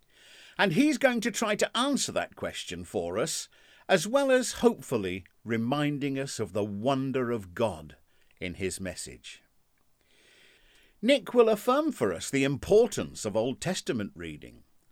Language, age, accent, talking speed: English, 50-69, British, 145 wpm